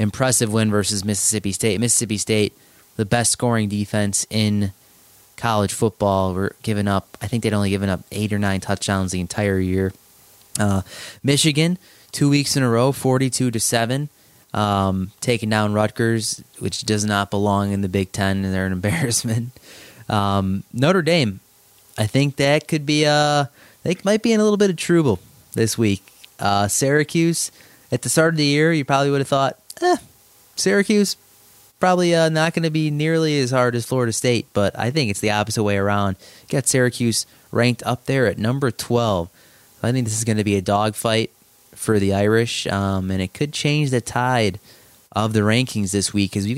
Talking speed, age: 185 wpm, 20-39